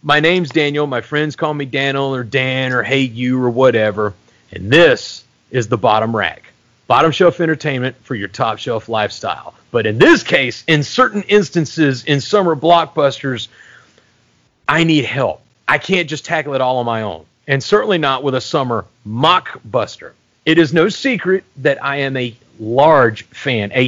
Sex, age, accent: male, 40-59, American